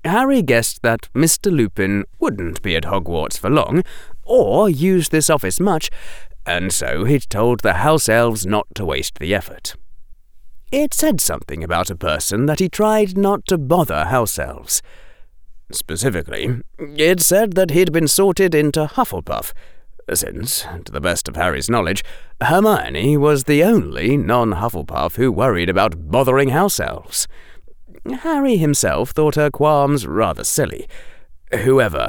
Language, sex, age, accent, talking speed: English, male, 30-49, British, 145 wpm